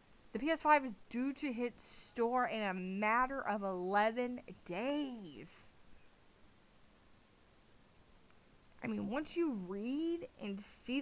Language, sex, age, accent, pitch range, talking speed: English, female, 20-39, American, 190-265 Hz, 110 wpm